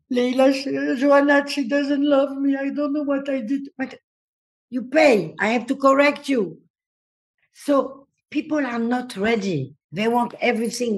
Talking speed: 160 wpm